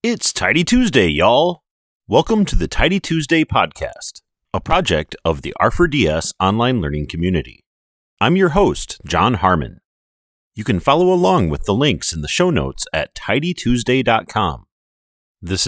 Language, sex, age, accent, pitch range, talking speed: English, male, 30-49, American, 80-115 Hz, 140 wpm